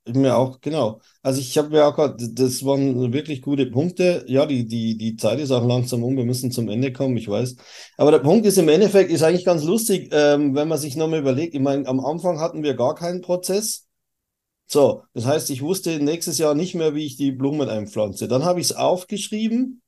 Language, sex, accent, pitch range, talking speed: German, male, German, 135-180 Hz, 225 wpm